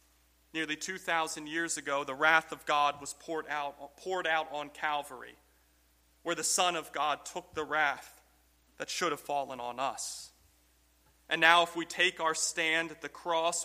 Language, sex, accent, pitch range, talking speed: English, male, American, 135-165 Hz, 170 wpm